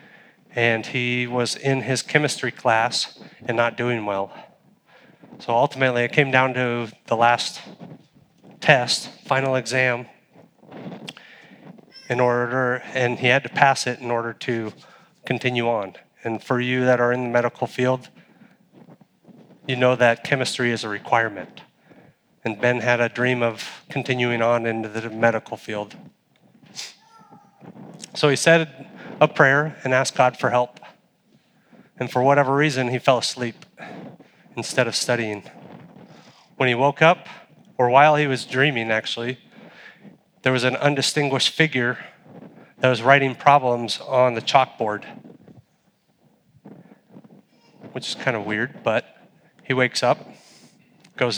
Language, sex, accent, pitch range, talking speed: English, male, American, 120-145 Hz, 135 wpm